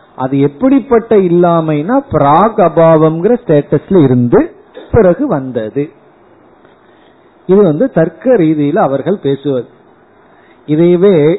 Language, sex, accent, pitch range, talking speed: Tamil, male, native, 140-180 Hz, 75 wpm